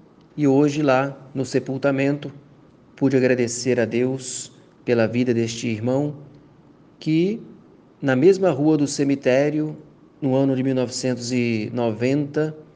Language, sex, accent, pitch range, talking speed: Portuguese, male, Brazilian, 125-150 Hz, 110 wpm